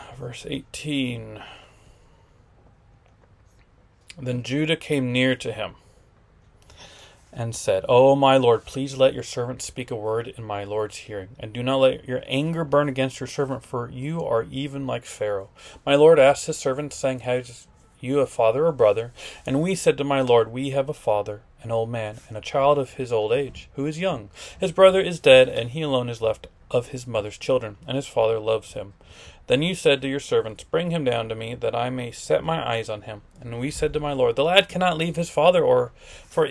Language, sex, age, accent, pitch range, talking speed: English, male, 30-49, American, 110-145 Hz, 205 wpm